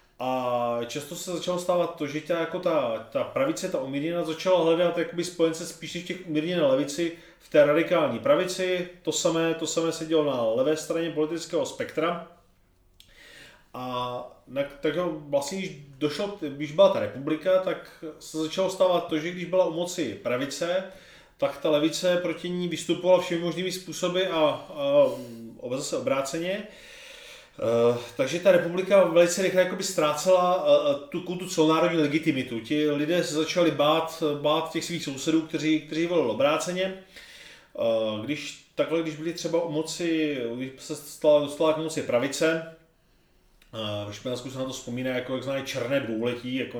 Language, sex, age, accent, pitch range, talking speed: Czech, male, 30-49, native, 140-180 Hz, 155 wpm